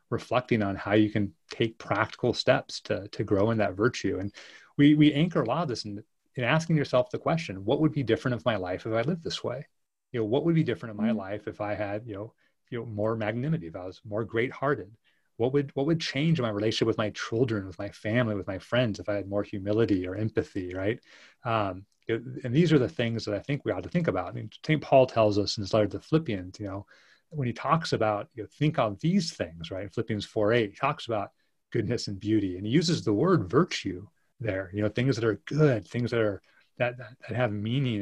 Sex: male